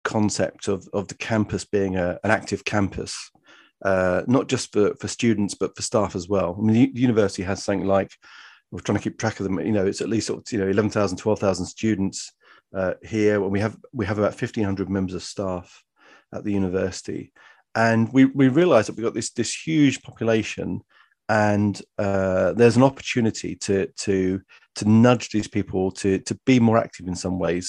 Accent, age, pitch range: British, 40-59, 95-110 Hz